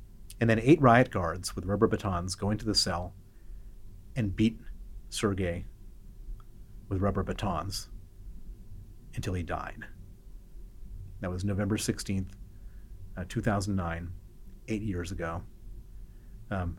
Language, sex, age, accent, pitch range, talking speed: English, male, 30-49, American, 95-105 Hz, 110 wpm